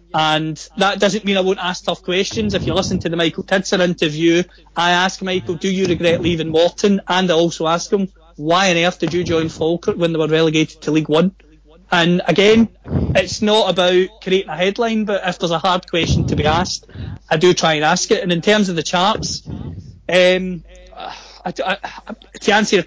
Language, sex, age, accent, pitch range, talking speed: English, male, 30-49, British, 165-190 Hz, 200 wpm